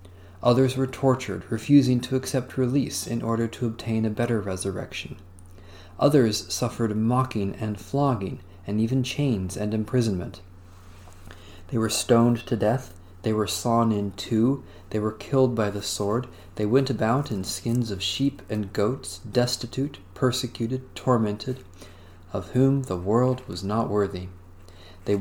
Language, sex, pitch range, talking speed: English, male, 95-130 Hz, 145 wpm